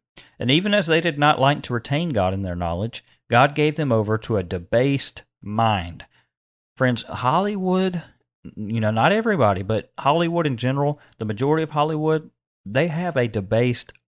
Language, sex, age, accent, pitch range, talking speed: English, male, 40-59, American, 105-135 Hz, 165 wpm